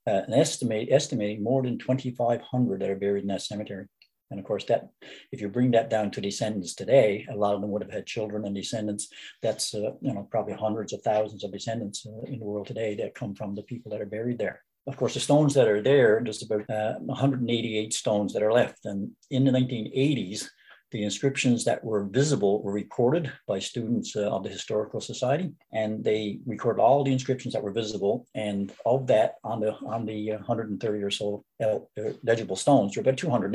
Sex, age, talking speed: male, 60-79, 215 wpm